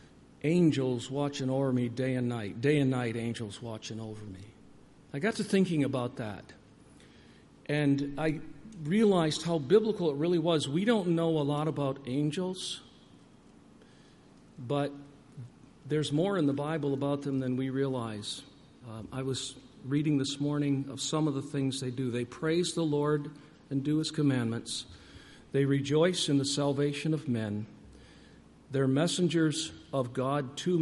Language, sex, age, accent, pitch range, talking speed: English, male, 50-69, American, 125-150 Hz, 155 wpm